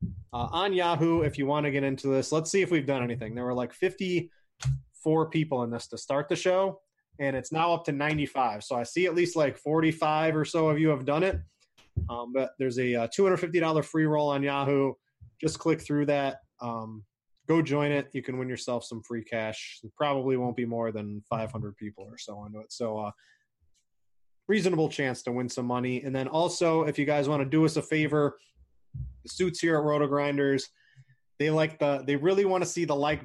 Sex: male